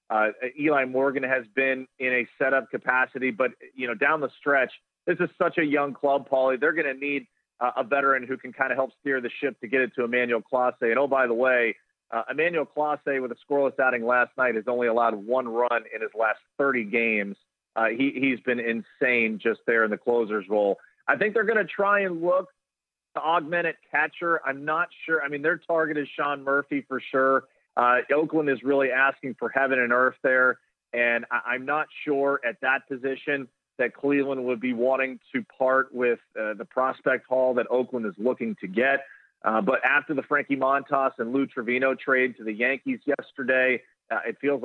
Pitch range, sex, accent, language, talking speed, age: 125-140 Hz, male, American, English, 205 wpm, 40-59